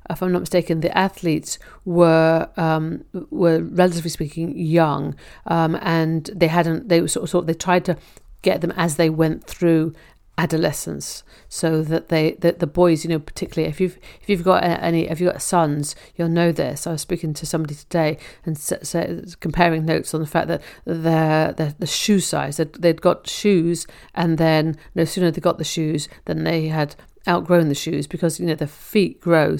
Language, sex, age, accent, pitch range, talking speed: English, female, 50-69, British, 155-175 Hz, 200 wpm